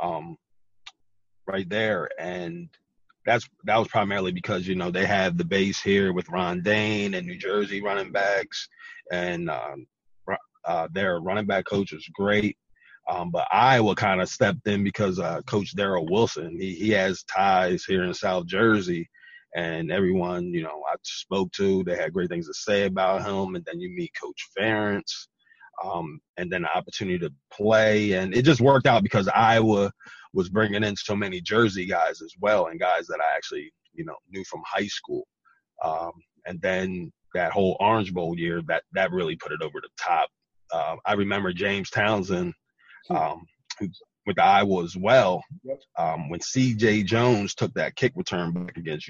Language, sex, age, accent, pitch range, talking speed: English, male, 30-49, American, 95-160 Hz, 175 wpm